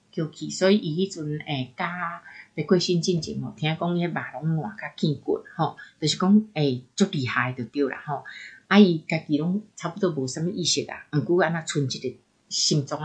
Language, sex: Chinese, female